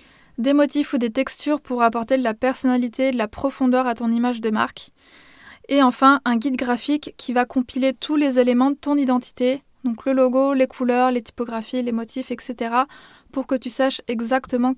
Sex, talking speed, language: female, 190 wpm, French